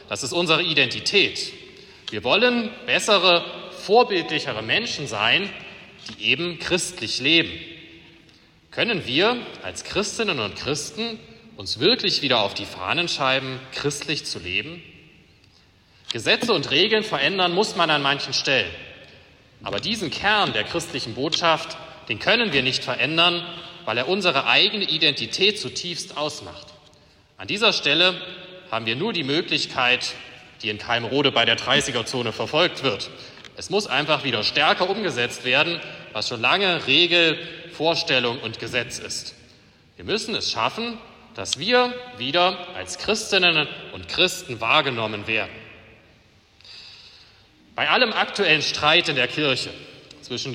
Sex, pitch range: male, 120-175 Hz